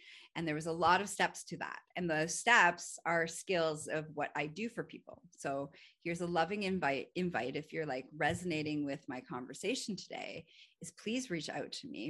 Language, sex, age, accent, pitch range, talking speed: English, female, 30-49, American, 150-185 Hz, 200 wpm